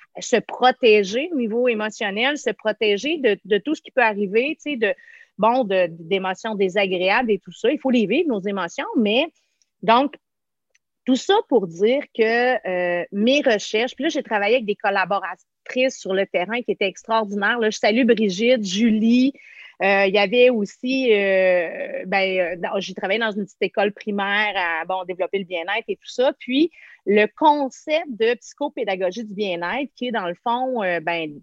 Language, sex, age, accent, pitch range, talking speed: French, female, 30-49, Canadian, 200-270 Hz, 180 wpm